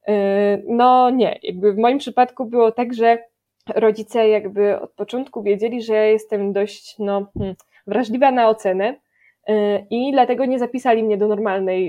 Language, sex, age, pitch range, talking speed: Polish, female, 20-39, 210-275 Hz, 145 wpm